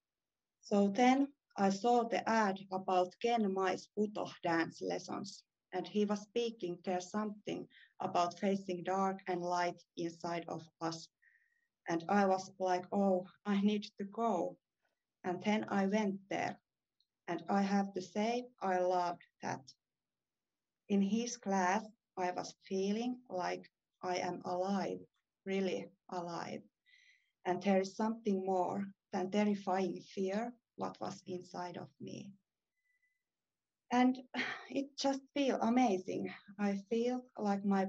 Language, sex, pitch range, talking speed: English, female, 180-210 Hz, 130 wpm